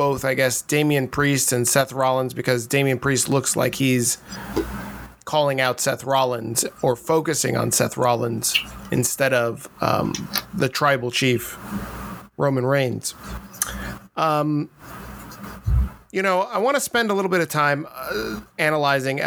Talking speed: 140 wpm